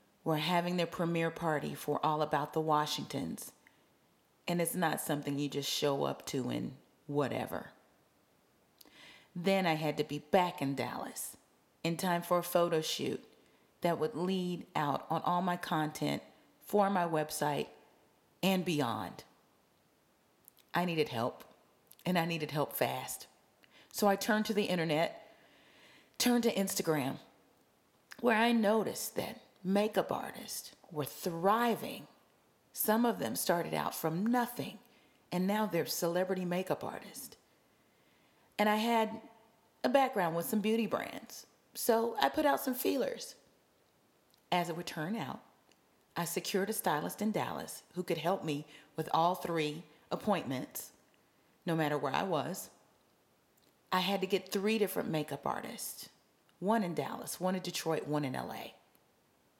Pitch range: 155-205 Hz